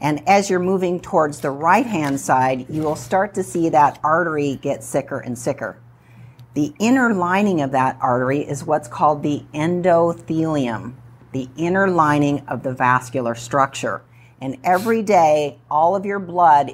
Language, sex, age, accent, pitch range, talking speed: English, female, 50-69, American, 135-175 Hz, 160 wpm